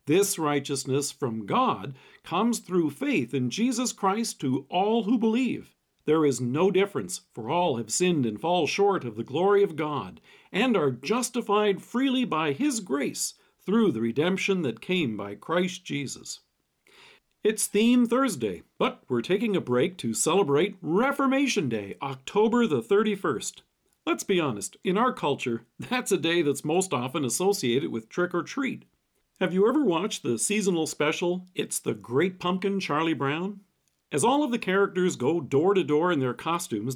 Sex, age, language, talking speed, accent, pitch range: male, 50-69, English, 160 wpm, American, 140-215 Hz